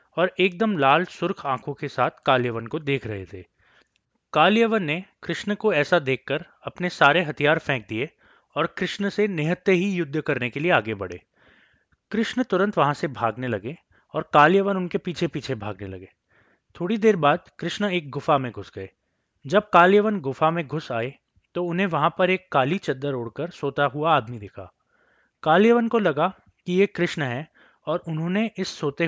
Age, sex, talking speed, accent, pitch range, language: 20-39, male, 175 wpm, native, 130-190 Hz, Hindi